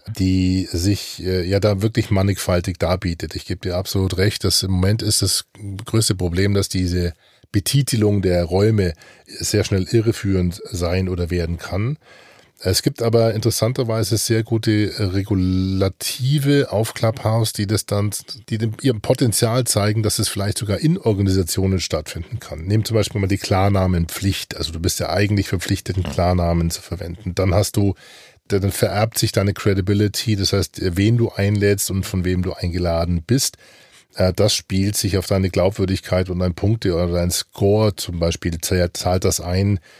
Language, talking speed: German, 160 wpm